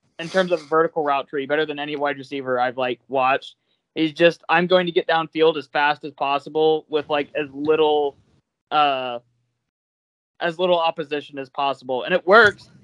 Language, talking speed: English, 180 wpm